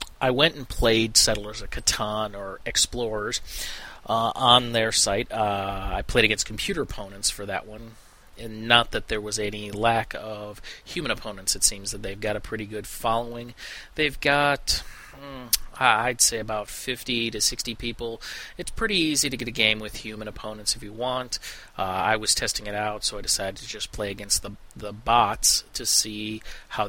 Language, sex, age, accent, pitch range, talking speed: English, male, 30-49, American, 105-120 Hz, 185 wpm